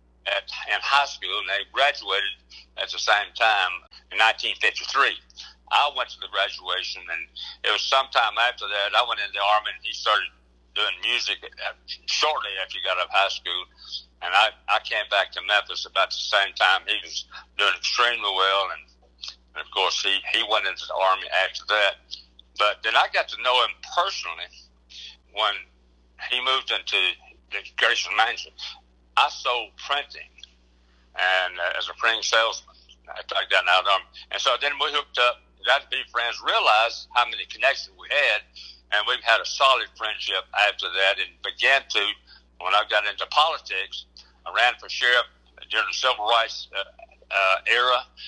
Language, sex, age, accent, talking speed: English, male, 60-79, American, 175 wpm